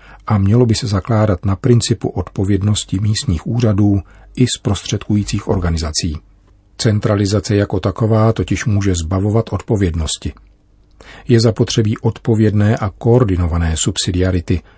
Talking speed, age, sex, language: 105 wpm, 40-59, male, Czech